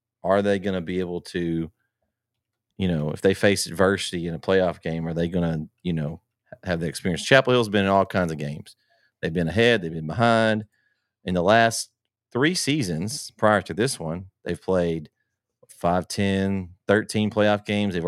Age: 30-49